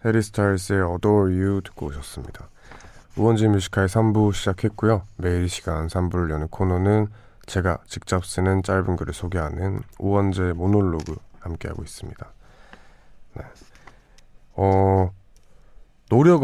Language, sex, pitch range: Korean, male, 90-105 Hz